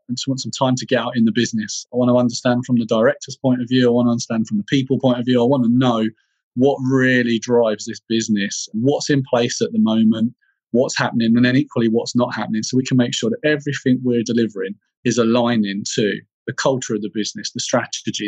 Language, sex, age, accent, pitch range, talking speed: English, male, 30-49, British, 115-135 Hz, 240 wpm